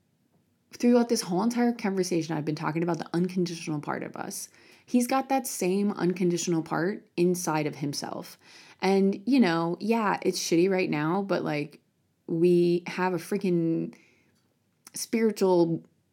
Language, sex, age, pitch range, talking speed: English, female, 20-39, 165-210 Hz, 140 wpm